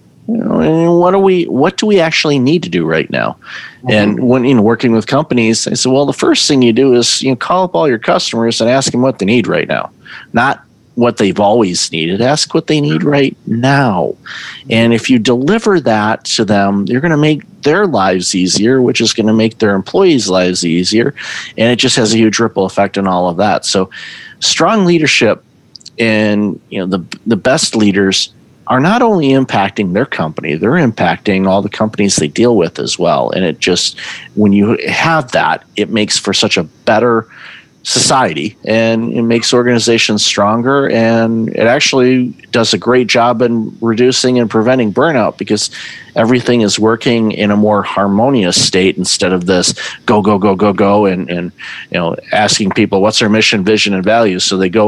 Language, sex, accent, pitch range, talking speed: English, male, American, 105-130 Hz, 200 wpm